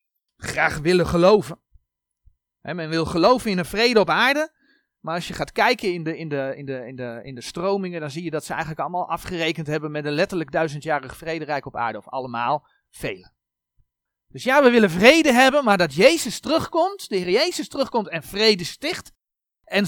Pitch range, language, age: 145-200 Hz, Dutch, 40-59